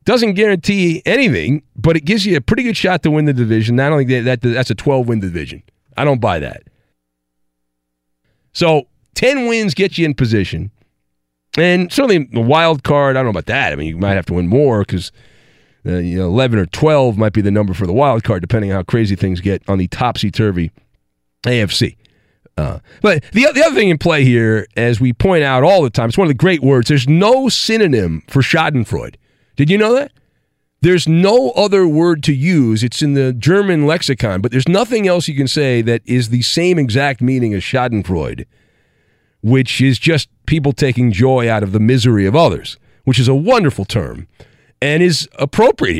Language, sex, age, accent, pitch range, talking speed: English, male, 40-59, American, 110-160 Hz, 195 wpm